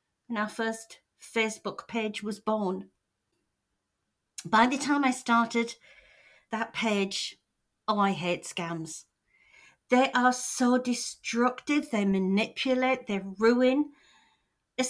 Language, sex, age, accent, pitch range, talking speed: English, female, 40-59, British, 200-265 Hz, 110 wpm